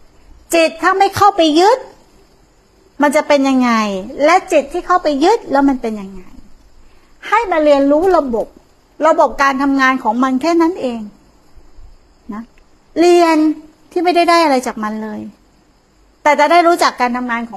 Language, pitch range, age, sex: Thai, 255-325 Hz, 60-79, female